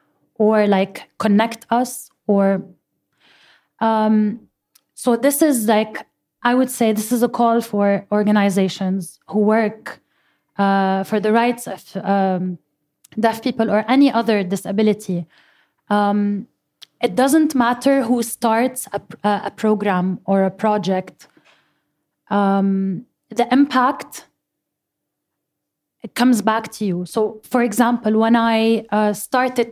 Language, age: English, 20-39